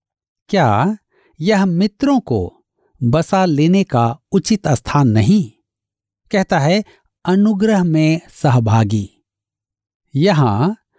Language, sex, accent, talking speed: Hindi, male, native, 85 wpm